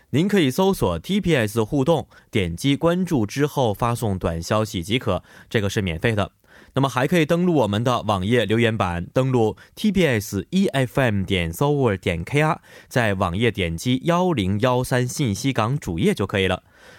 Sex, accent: male, Chinese